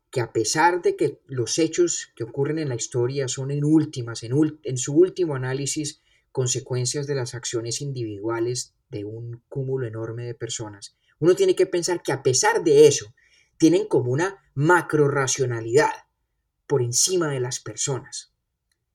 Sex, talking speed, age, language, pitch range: male, 160 wpm, 30-49, Spanish, 115-165 Hz